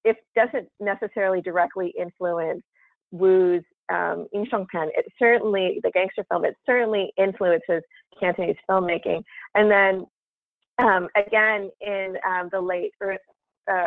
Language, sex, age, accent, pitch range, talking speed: English, female, 30-49, American, 175-220 Hz, 115 wpm